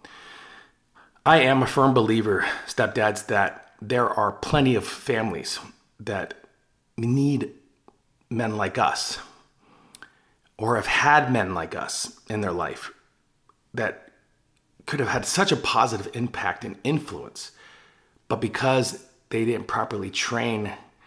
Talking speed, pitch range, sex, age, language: 120 wpm, 105-130 Hz, male, 40-59, English